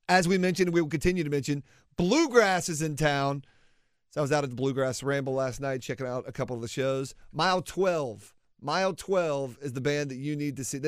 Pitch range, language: 125-160 Hz, English